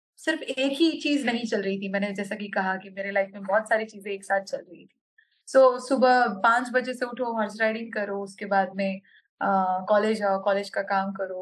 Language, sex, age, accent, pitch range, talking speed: English, female, 20-39, Indian, 200-255 Hz, 220 wpm